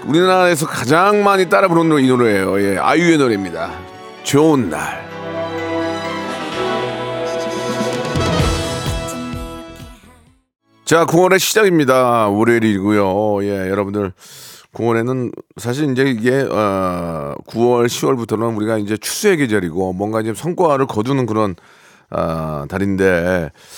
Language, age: Korean, 40-59